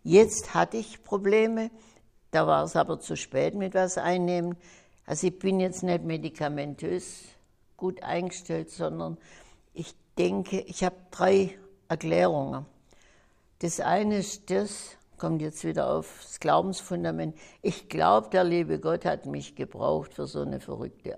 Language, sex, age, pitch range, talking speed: German, female, 60-79, 120-190 Hz, 140 wpm